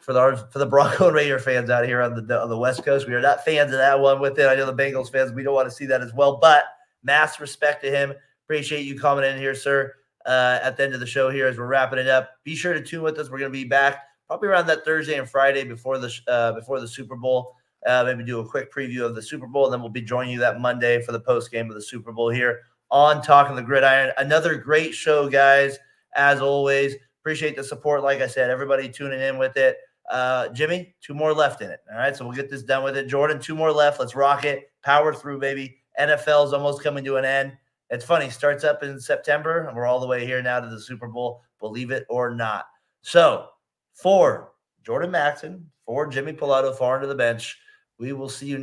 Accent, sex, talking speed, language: American, male, 255 wpm, English